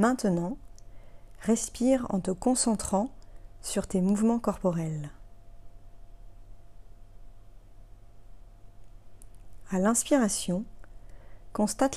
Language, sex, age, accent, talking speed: French, female, 40-59, French, 60 wpm